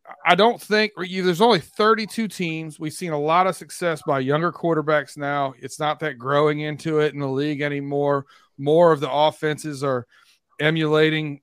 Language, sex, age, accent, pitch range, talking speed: English, male, 40-59, American, 140-170 Hz, 175 wpm